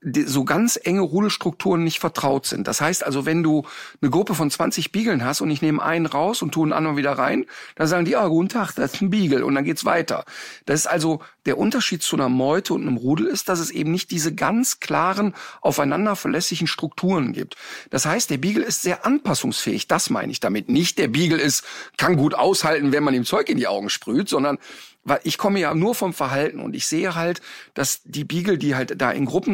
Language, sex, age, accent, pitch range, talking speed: German, male, 50-69, German, 140-185 Hz, 230 wpm